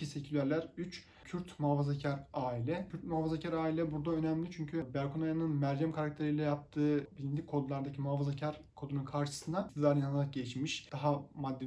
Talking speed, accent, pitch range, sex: 135 wpm, native, 135-150 Hz, male